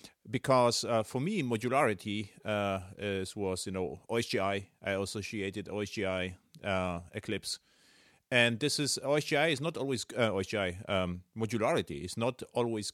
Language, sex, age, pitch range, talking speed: English, male, 40-59, 105-130 Hz, 135 wpm